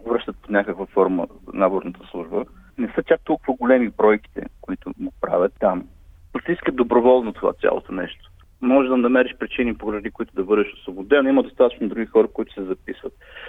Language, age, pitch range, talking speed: Bulgarian, 30-49, 105-130 Hz, 165 wpm